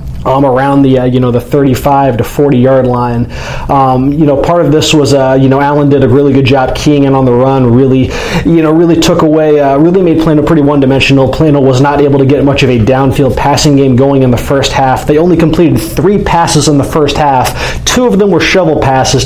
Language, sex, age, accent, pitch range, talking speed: English, male, 30-49, American, 130-155 Hz, 235 wpm